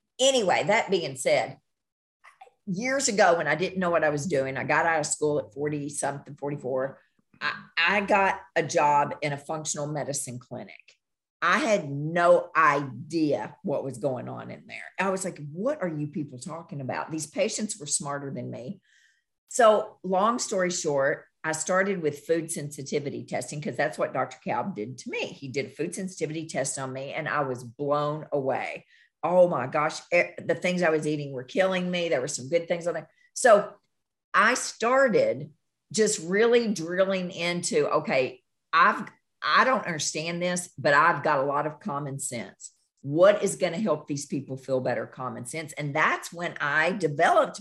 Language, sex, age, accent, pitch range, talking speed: English, female, 50-69, American, 145-190 Hz, 180 wpm